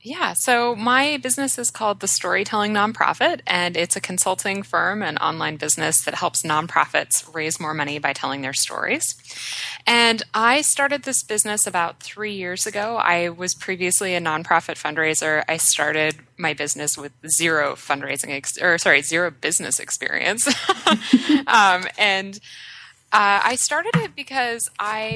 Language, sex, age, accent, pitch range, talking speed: English, female, 20-39, American, 150-200 Hz, 150 wpm